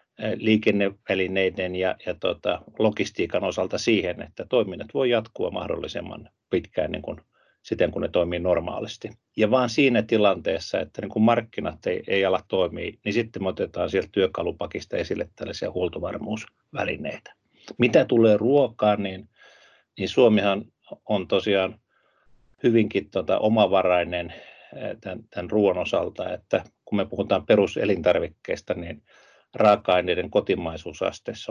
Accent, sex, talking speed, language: native, male, 110 wpm, Finnish